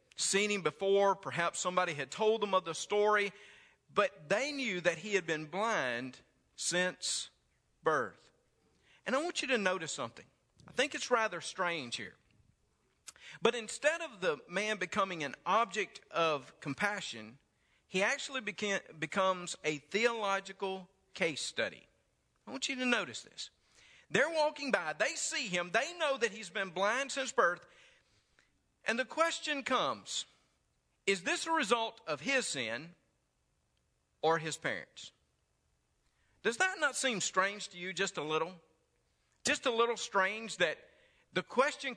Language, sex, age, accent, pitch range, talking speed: English, male, 50-69, American, 175-255 Hz, 145 wpm